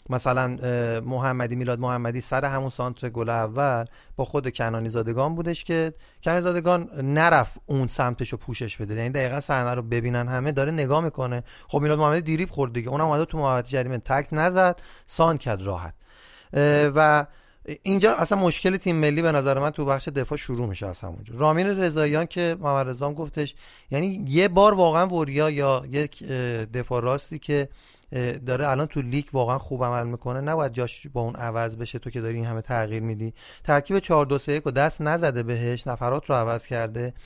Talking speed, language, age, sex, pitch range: 180 wpm, Persian, 30-49, male, 125-160 Hz